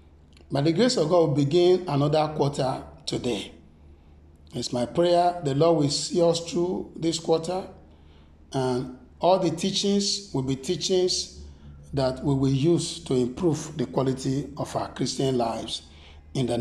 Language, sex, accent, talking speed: English, male, Nigerian, 150 wpm